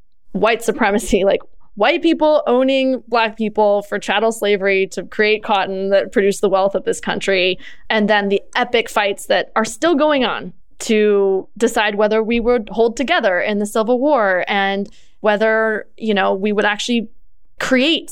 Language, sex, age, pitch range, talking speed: English, female, 20-39, 200-260 Hz, 165 wpm